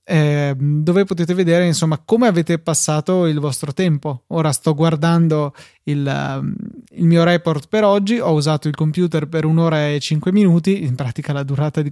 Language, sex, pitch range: Italian, male, 150-185 Hz